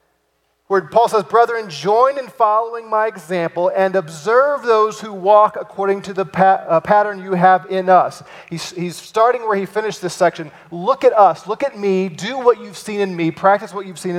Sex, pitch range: male, 175-220 Hz